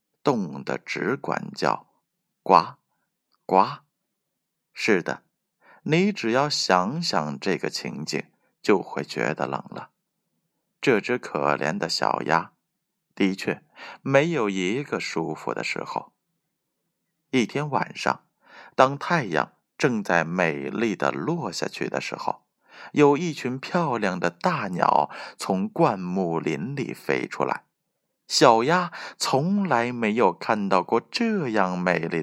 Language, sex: Chinese, male